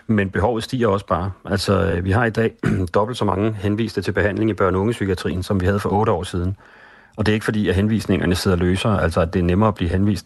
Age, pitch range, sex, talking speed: 40-59, 95-105 Hz, male, 260 wpm